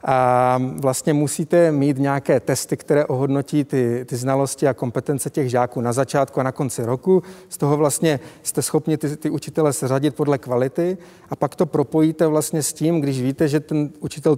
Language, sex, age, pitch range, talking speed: Czech, male, 40-59, 135-165 Hz, 190 wpm